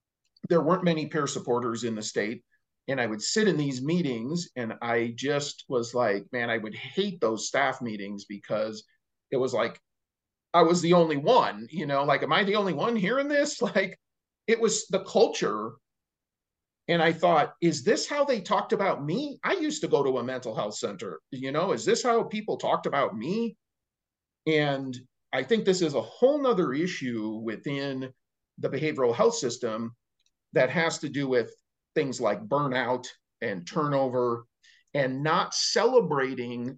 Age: 40-59